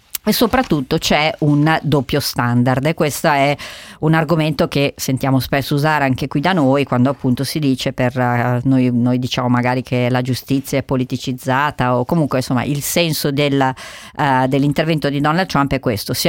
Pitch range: 130-155 Hz